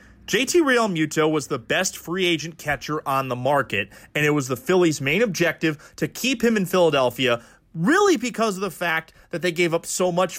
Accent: American